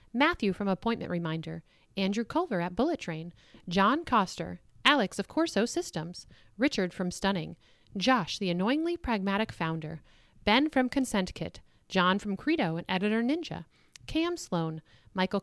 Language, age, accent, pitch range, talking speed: English, 40-59, American, 175-260 Hz, 140 wpm